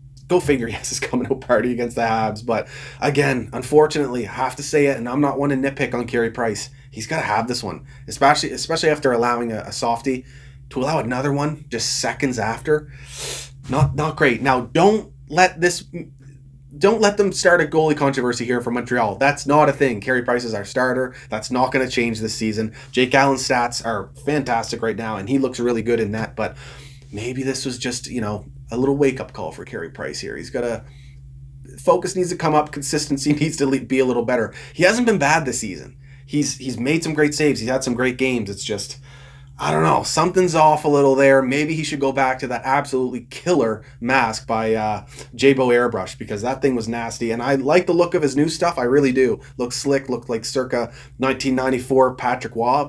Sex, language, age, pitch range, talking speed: male, English, 20-39, 120-145 Hz, 215 wpm